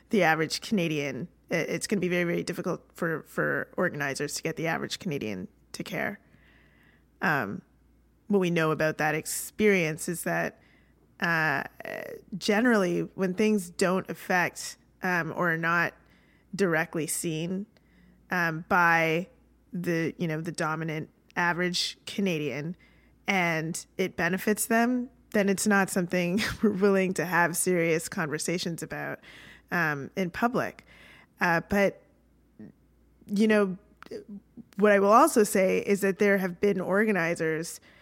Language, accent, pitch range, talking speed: English, American, 165-200 Hz, 130 wpm